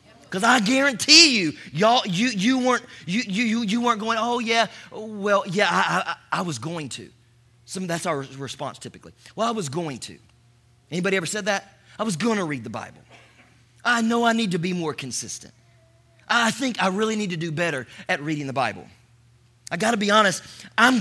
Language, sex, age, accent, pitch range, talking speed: English, male, 30-49, American, 150-225 Hz, 200 wpm